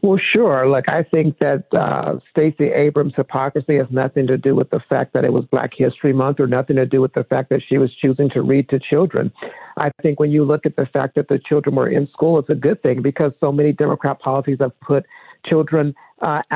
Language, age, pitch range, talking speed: English, 50-69, 140-165 Hz, 235 wpm